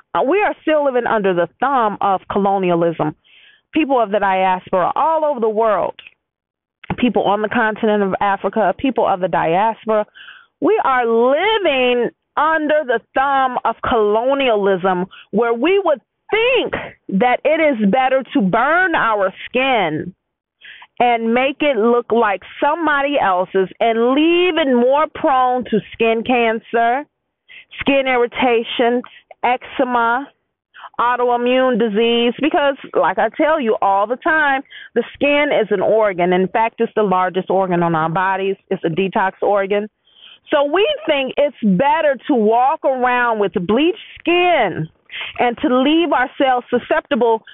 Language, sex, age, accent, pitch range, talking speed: English, female, 40-59, American, 210-285 Hz, 140 wpm